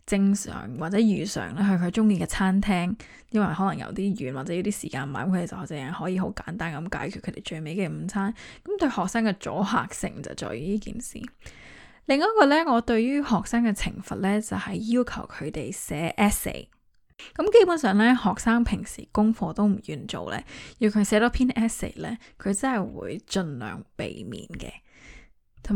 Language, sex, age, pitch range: Chinese, female, 10-29, 190-235 Hz